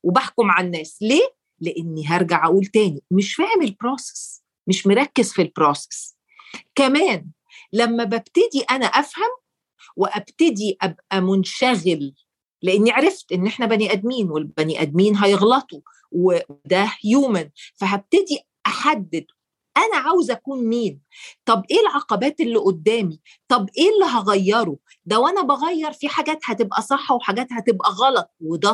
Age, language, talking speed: 40-59, Arabic, 125 wpm